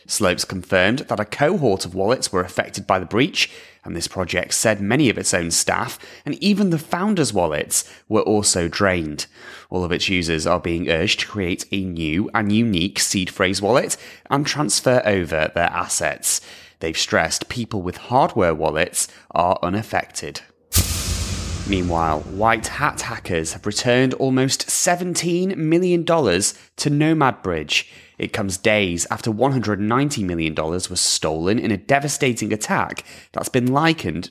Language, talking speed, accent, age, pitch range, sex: English, 150 wpm, British, 30-49, 95-145 Hz, male